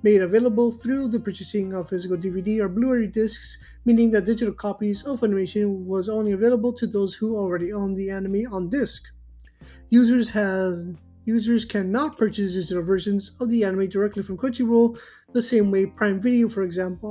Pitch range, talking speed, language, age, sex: 195-235 Hz, 170 wpm, English, 30-49, male